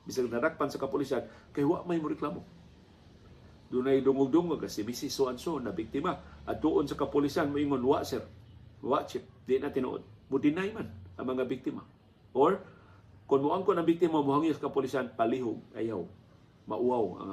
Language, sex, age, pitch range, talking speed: Filipino, male, 50-69, 105-135 Hz, 170 wpm